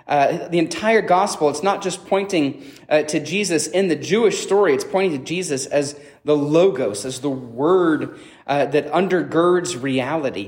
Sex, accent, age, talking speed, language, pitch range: male, American, 30-49, 165 wpm, English, 150-200 Hz